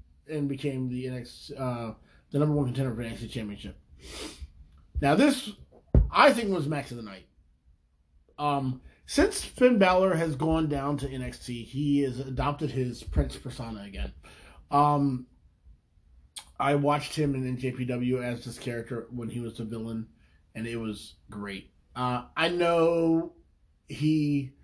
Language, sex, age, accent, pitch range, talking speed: English, male, 30-49, American, 100-140 Hz, 145 wpm